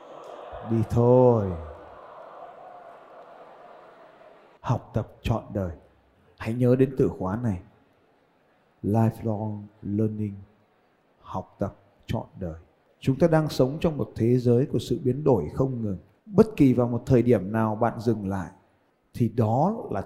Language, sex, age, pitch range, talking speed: Vietnamese, male, 20-39, 100-140 Hz, 135 wpm